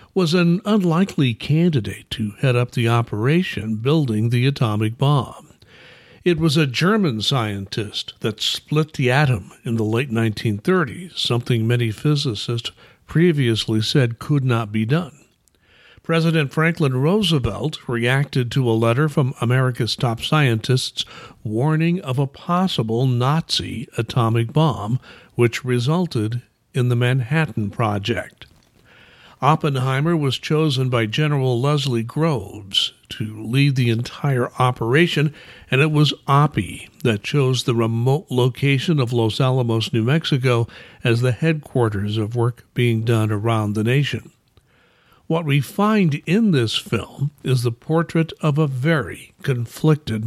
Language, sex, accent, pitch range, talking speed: English, male, American, 115-155 Hz, 130 wpm